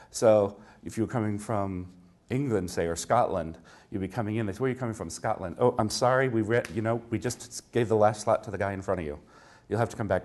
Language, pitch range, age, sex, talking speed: English, 90-110 Hz, 40-59, male, 265 wpm